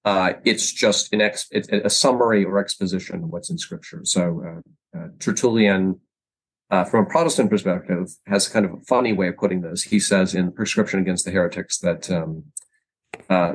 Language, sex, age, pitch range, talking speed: English, male, 30-49, 95-135 Hz, 185 wpm